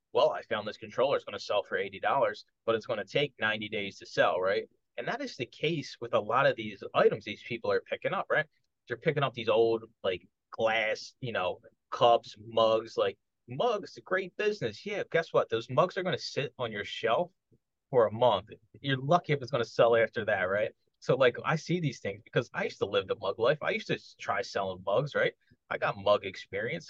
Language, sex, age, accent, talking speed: English, male, 30-49, American, 230 wpm